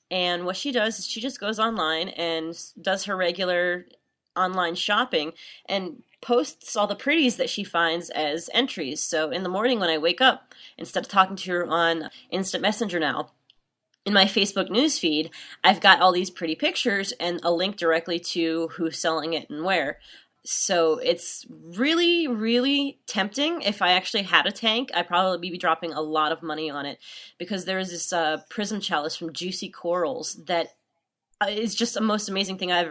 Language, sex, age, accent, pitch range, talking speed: English, female, 20-39, American, 165-220 Hz, 185 wpm